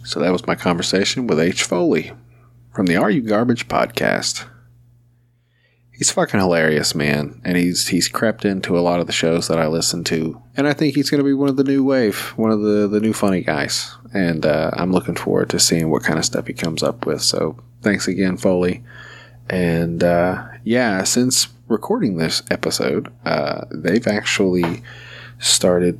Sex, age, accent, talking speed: male, 30-49, American, 185 wpm